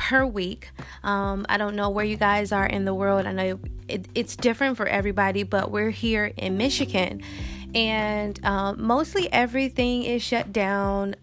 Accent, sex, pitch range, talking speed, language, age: American, female, 195-245 Hz, 165 wpm, English, 20-39